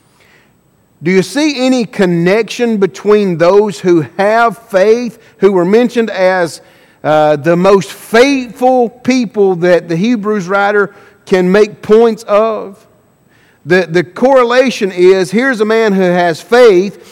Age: 50-69